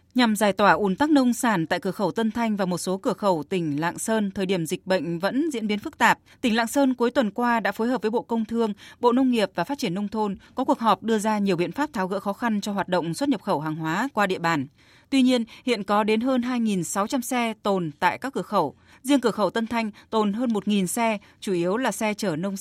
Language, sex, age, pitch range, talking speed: Vietnamese, female, 20-39, 185-240 Hz, 270 wpm